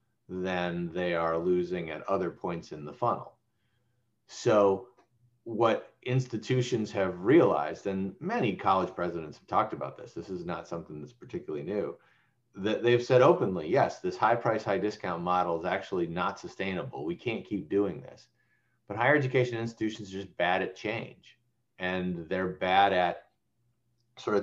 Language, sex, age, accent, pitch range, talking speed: English, male, 40-59, American, 95-120 Hz, 155 wpm